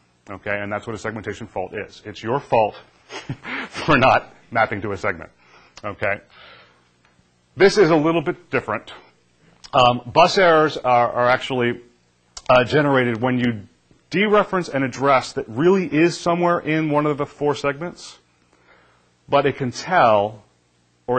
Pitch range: 100-145 Hz